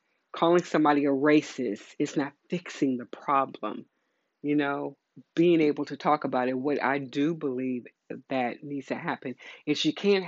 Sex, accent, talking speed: female, American, 165 wpm